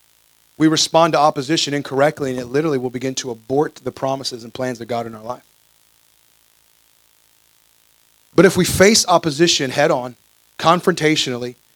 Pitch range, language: 130-155 Hz, English